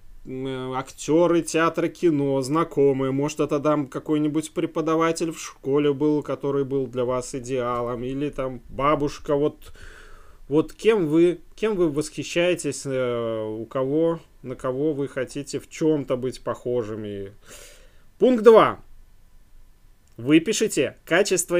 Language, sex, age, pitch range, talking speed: Russian, male, 20-39, 120-165 Hz, 115 wpm